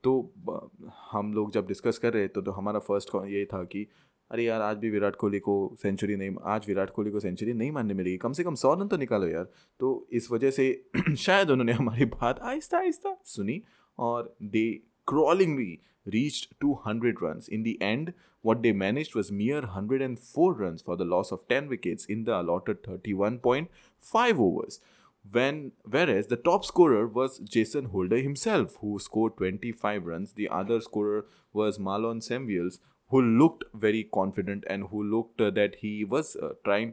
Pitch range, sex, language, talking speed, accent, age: 100-130 Hz, male, English, 175 wpm, Indian, 20-39